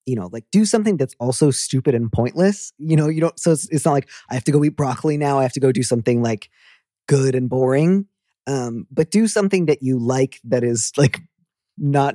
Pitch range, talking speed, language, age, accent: 120-150 Hz, 230 wpm, English, 20-39, American